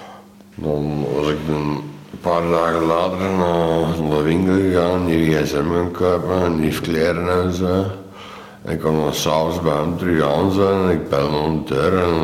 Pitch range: 75-90 Hz